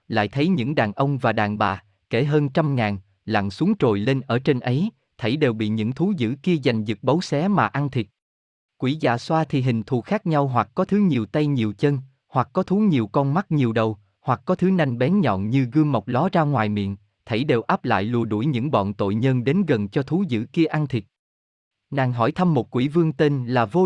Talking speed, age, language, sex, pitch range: 240 wpm, 20-39, Vietnamese, male, 110-160 Hz